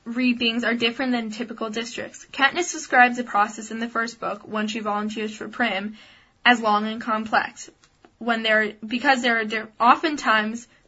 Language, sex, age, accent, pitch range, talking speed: English, female, 10-29, American, 210-245 Hz, 165 wpm